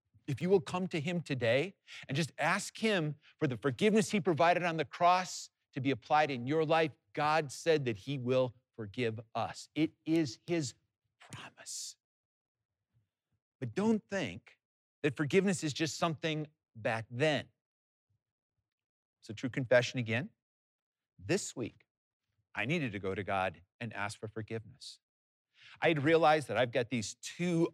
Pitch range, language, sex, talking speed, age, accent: 110-155 Hz, English, male, 150 wpm, 50-69, American